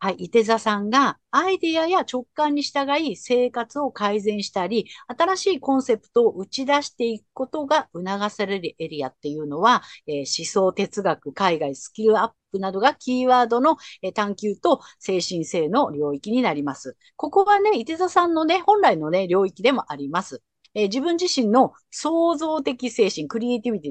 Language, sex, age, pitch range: Japanese, female, 50-69, 195-305 Hz